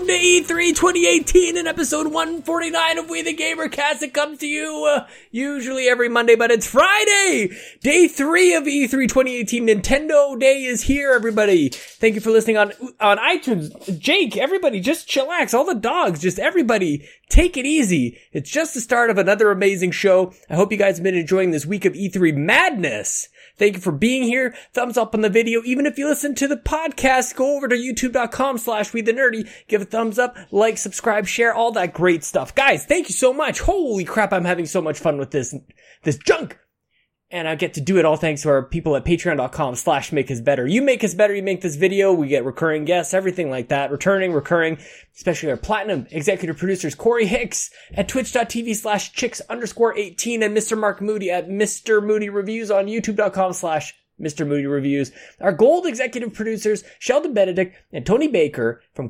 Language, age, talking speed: English, 20-39, 195 wpm